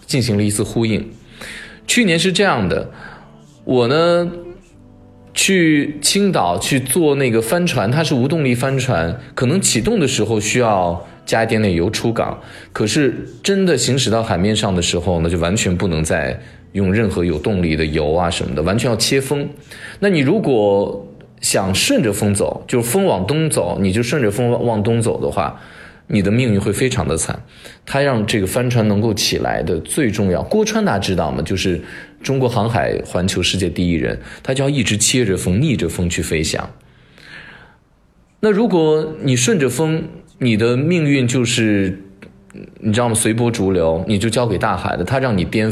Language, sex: Chinese, male